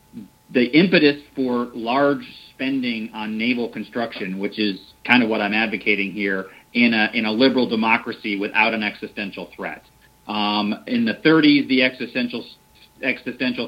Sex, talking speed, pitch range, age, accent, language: male, 145 wpm, 110-125 Hz, 40-59, American, English